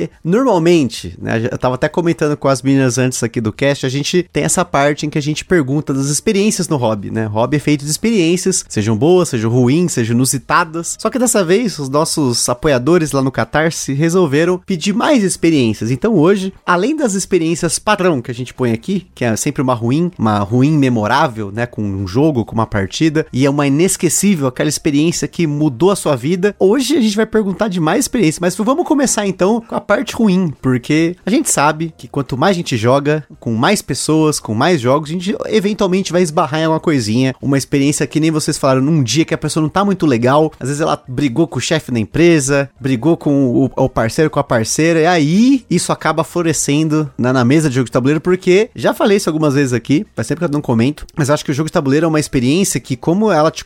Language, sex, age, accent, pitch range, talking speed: Portuguese, male, 30-49, Brazilian, 135-180 Hz, 225 wpm